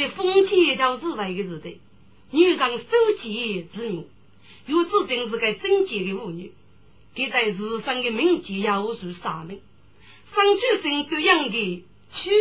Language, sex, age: Chinese, female, 40-59